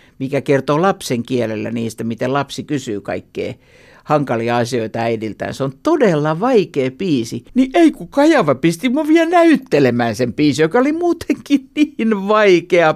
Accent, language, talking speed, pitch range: native, Finnish, 150 wpm, 130-185 Hz